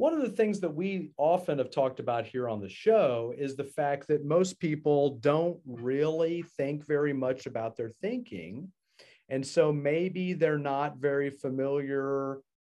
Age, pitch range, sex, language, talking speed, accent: 40-59, 130-180 Hz, male, English, 165 wpm, American